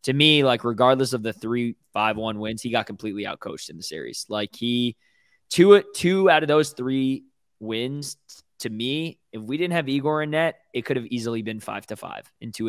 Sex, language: male, English